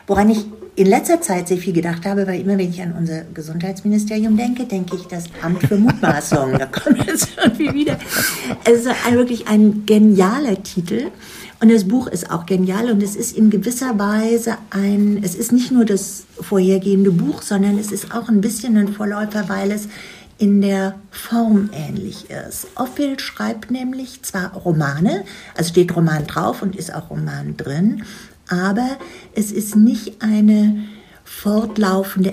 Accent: German